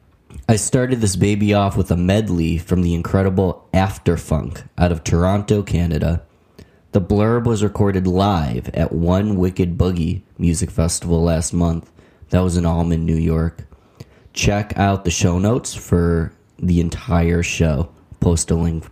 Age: 20-39